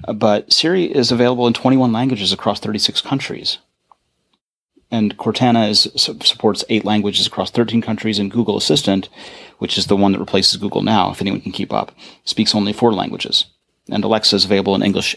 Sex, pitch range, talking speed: male, 100-110 Hz, 180 wpm